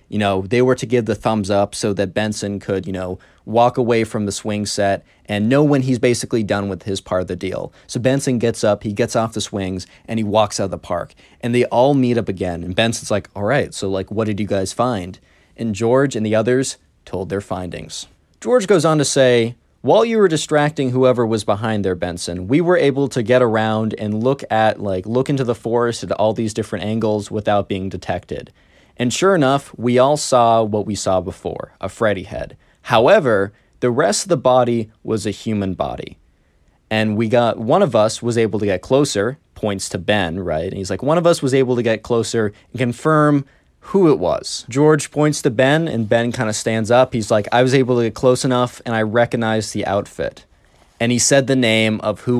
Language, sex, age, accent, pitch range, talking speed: English, male, 20-39, American, 100-125 Hz, 225 wpm